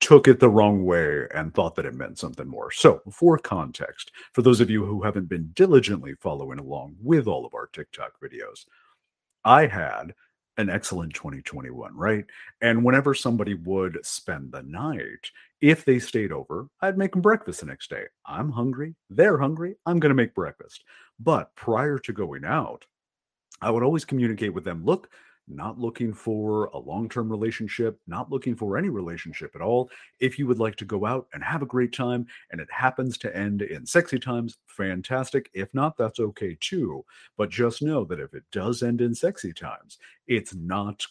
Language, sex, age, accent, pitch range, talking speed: English, male, 50-69, American, 105-130 Hz, 185 wpm